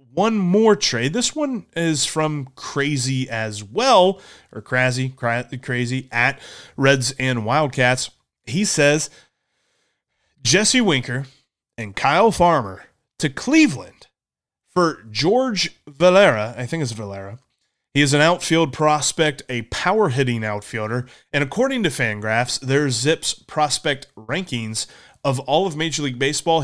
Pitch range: 125-165 Hz